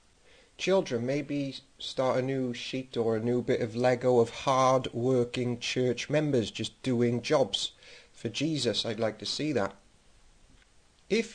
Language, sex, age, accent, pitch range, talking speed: English, male, 40-59, British, 110-130 Hz, 145 wpm